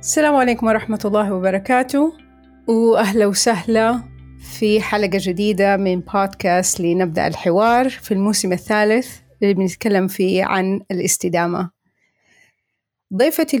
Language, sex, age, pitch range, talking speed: Arabic, female, 30-49, 190-235 Hz, 100 wpm